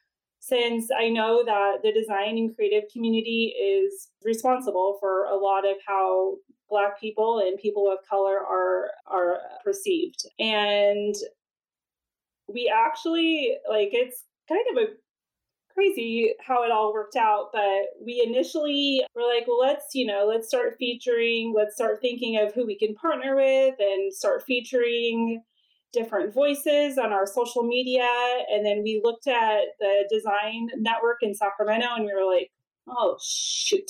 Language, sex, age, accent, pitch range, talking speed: English, female, 30-49, American, 210-280 Hz, 150 wpm